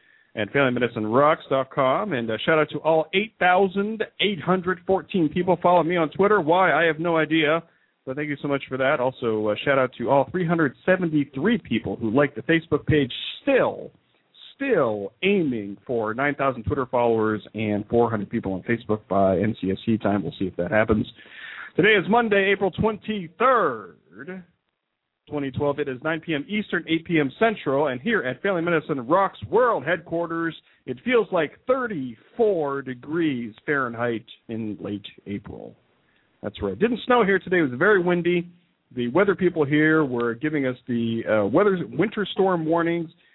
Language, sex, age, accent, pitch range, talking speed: English, male, 40-59, American, 115-180 Hz, 155 wpm